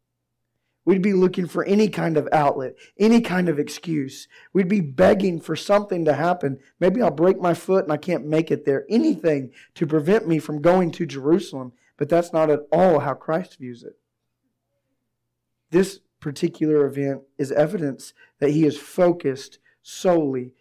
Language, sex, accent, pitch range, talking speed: English, male, American, 130-165 Hz, 165 wpm